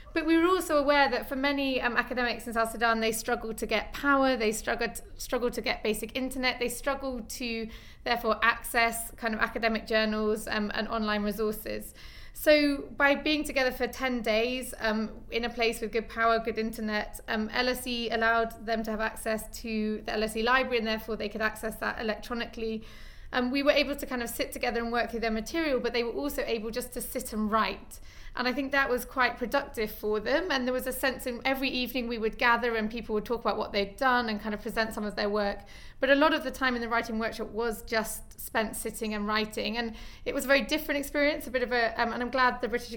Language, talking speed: English, 235 wpm